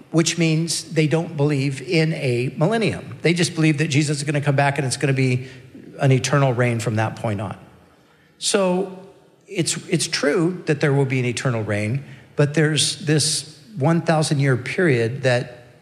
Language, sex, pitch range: English, male, 130-160 Hz